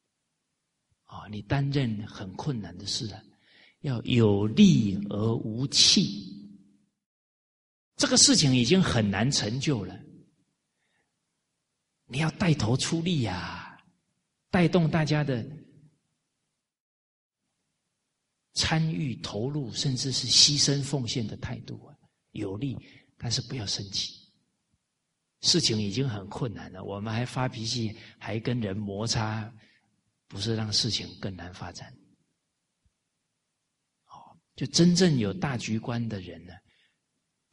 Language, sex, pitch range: Chinese, male, 105-140 Hz